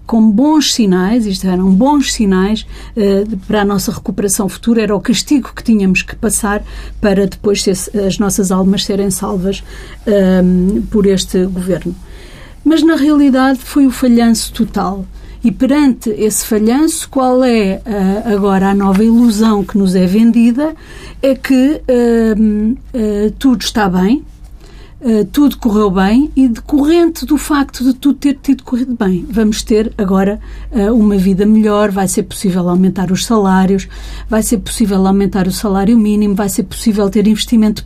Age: 50-69